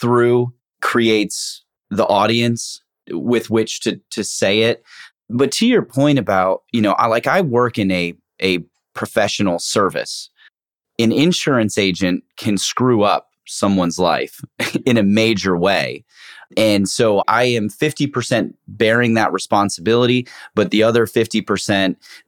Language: English